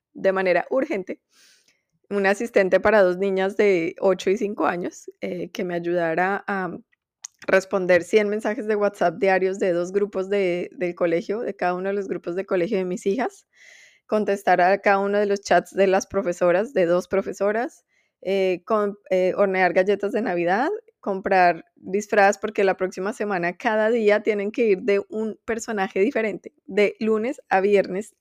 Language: Spanish